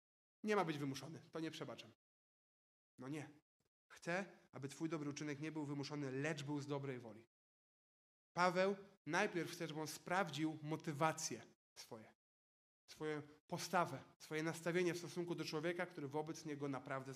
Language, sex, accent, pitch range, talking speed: Polish, male, native, 150-180 Hz, 145 wpm